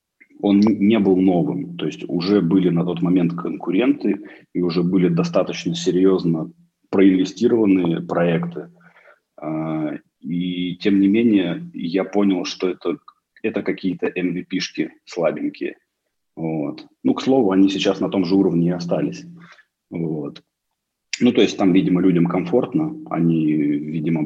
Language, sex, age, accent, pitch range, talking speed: Russian, male, 30-49, native, 90-125 Hz, 130 wpm